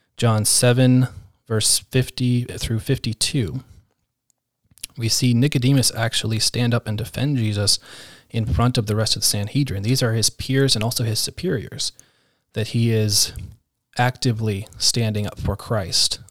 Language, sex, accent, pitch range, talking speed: English, male, American, 105-125 Hz, 145 wpm